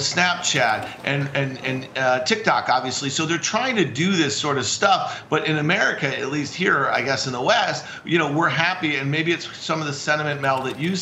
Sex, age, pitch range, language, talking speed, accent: male, 50-69, 135-165 Hz, English, 225 wpm, American